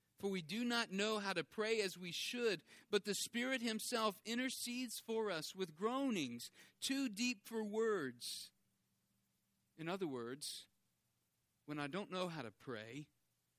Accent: American